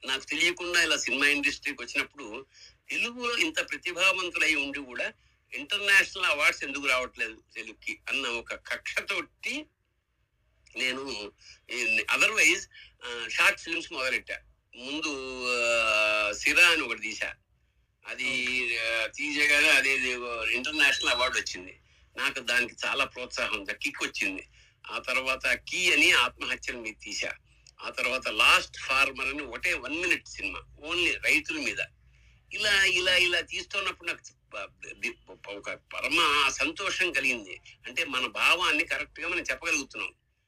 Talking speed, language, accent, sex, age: 115 wpm, Telugu, native, male, 60-79